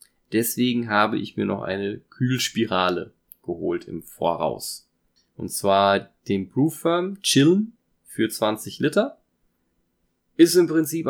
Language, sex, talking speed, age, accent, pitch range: German, male, 120 wpm, 20-39, German, 105-145 Hz